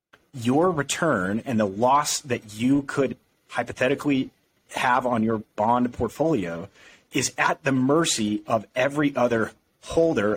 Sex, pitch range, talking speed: male, 105-135 Hz, 125 wpm